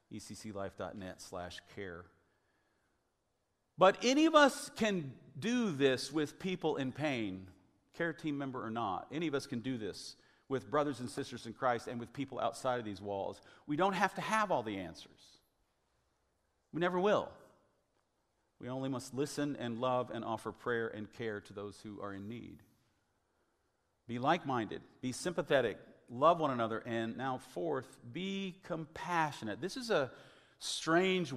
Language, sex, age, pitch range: English, male, 50-69, 110-165 Hz